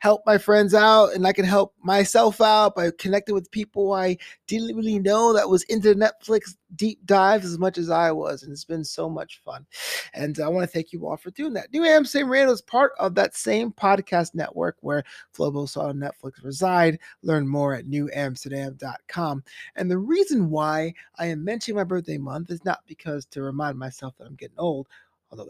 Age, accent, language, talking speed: 30-49, American, English, 200 wpm